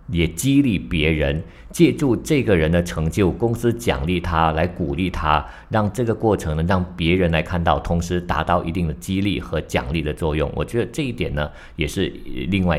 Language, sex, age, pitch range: Chinese, male, 50-69, 80-105 Hz